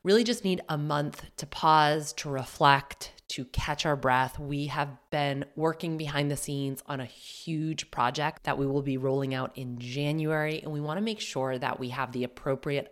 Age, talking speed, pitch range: 30-49, 200 wpm, 140-165 Hz